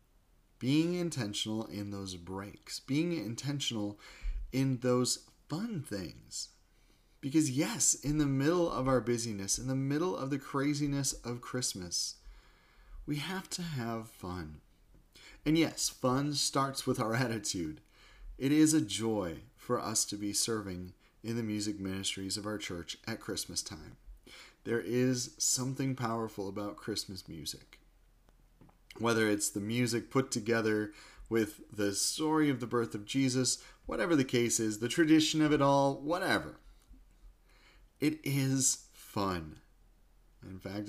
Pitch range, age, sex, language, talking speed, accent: 105-150 Hz, 30-49, male, English, 140 wpm, American